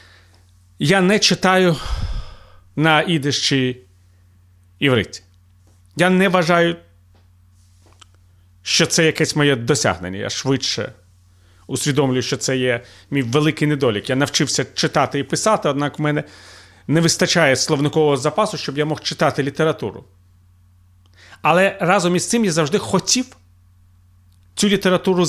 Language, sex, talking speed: Ukrainian, male, 115 wpm